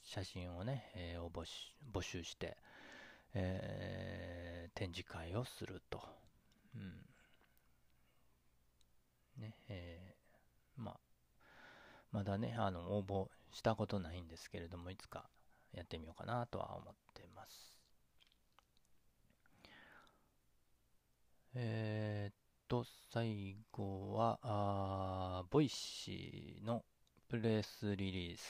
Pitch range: 85-110 Hz